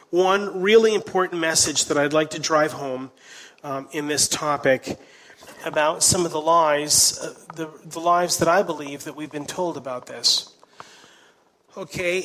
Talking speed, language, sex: 160 wpm, English, male